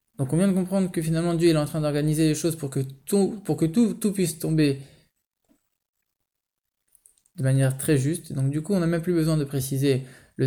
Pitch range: 135-175 Hz